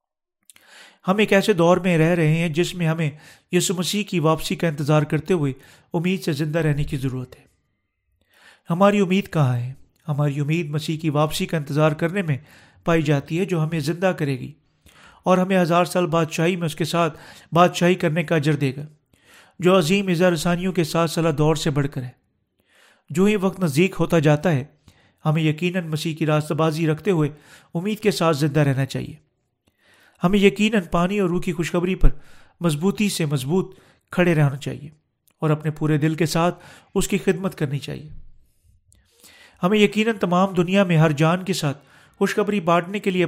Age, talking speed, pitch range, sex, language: 40-59, 185 wpm, 150-185 Hz, male, Urdu